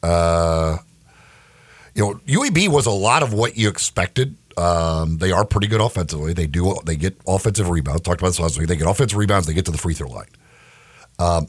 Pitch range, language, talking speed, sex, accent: 90-115 Hz, English, 210 wpm, male, American